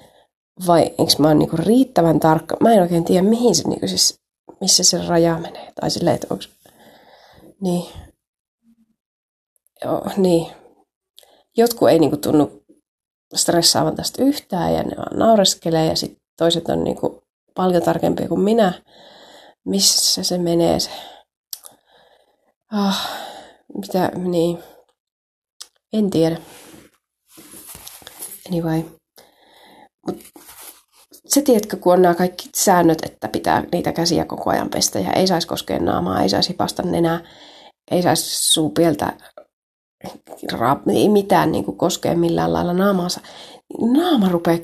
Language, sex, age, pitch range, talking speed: Finnish, female, 30-49, 165-225 Hz, 120 wpm